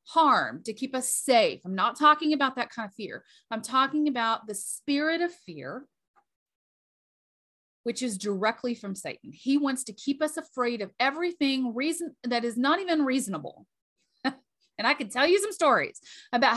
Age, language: 30-49, English